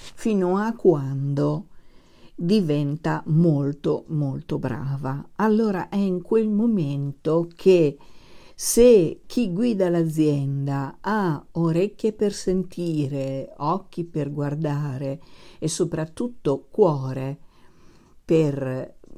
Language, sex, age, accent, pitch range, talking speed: Italian, female, 50-69, native, 140-180 Hz, 90 wpm